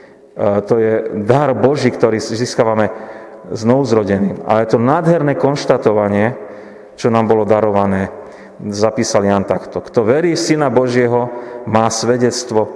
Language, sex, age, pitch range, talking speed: Slovak, male, 40-59, 120-150 Hz, 120 wpm